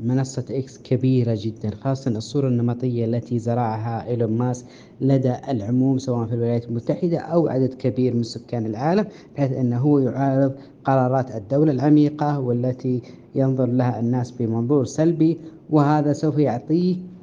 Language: Arabic